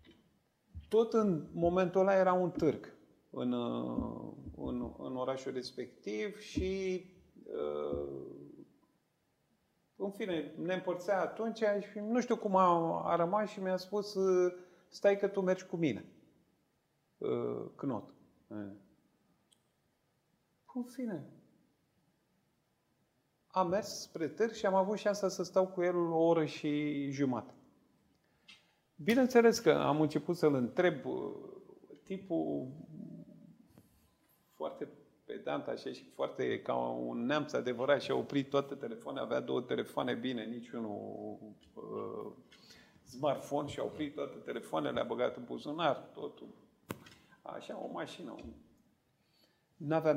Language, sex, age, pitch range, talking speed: Romanian, male, 30-49, 125-195 Hz, 115 wpm